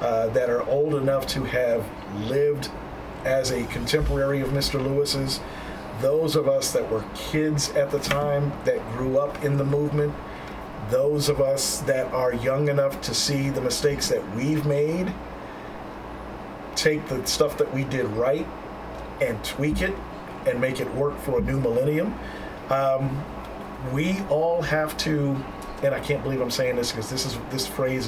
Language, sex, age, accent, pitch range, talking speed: English, male, 50-69, American, 125-150 Hz, 165 wpm